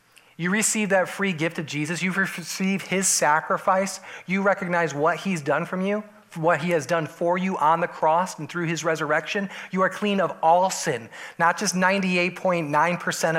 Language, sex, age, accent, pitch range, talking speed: English, male, 30-49, American, 150-185 Hz, 180 wpm